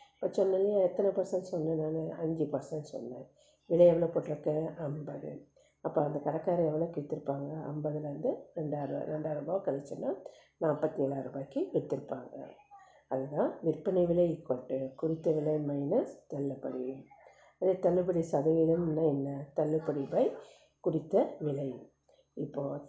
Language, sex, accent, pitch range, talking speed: Tamil, female, native, 145-170 Hz, 105 wpm